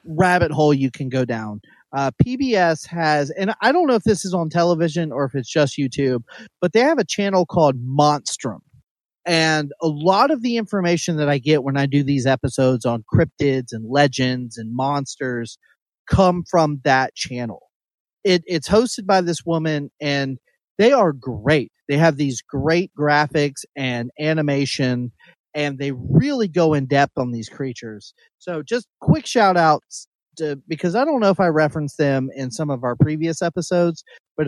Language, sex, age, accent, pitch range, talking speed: English, male, 30-49, American, 135-180 Hz, 170 wpm